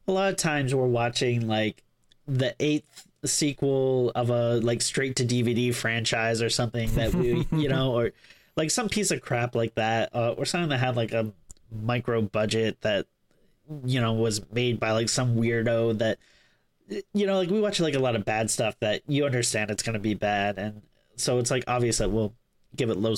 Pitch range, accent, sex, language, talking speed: 115-140 Hz, American, male, English, 200 wpm